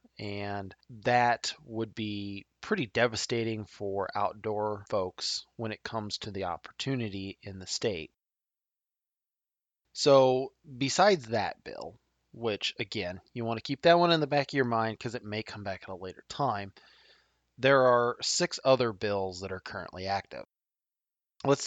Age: 20-39